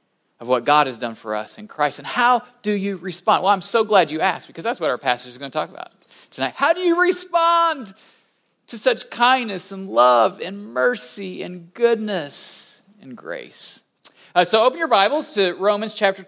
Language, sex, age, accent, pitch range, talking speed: English, male, 40-59, American, 160-230 Hz, 200 wpm